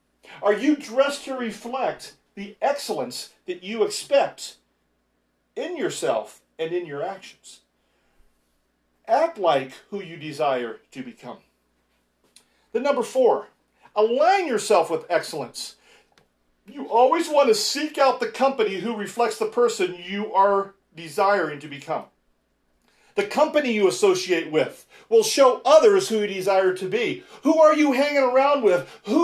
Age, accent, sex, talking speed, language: 40-59, American, male, 140 wpm, English